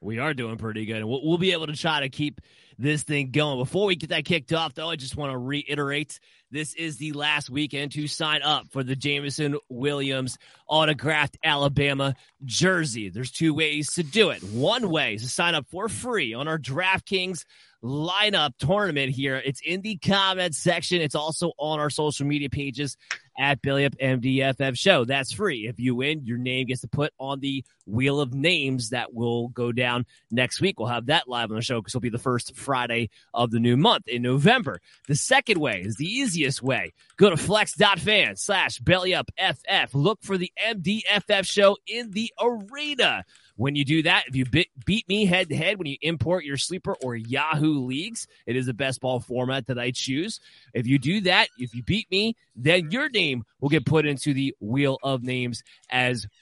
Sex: male